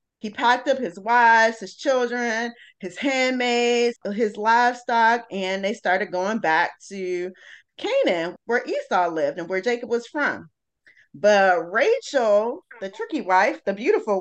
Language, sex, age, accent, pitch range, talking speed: English, female, 20-39, American, 190-265 Hz, 140 wpm